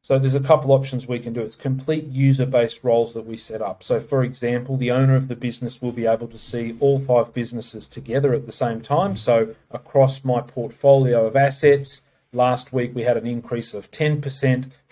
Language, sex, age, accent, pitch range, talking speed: English, male, 40-59, Australian, 120-135 Hz, 205 wpm